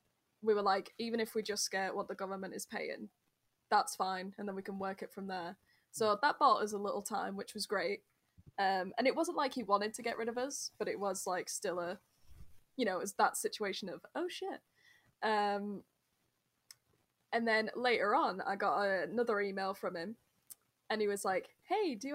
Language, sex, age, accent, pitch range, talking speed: English, female, 10-29, British, 195-235 Hz, 210 wpm